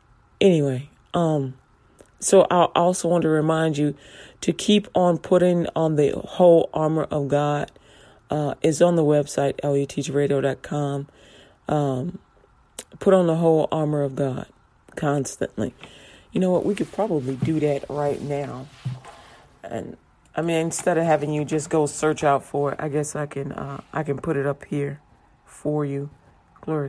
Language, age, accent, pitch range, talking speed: English, 40-59, American, 145-170 Hz, 160 wpm